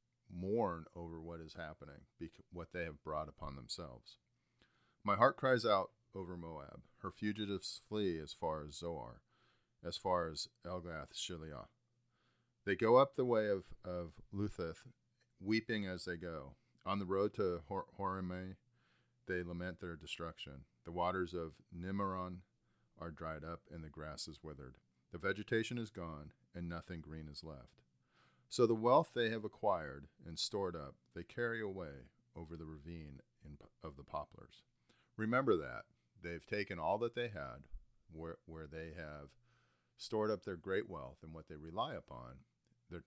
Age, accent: 40-59, American